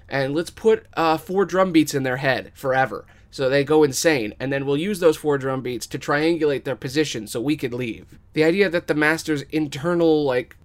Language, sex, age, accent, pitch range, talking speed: English, male, 20-39, American, 130-165 Hz, 215 wpm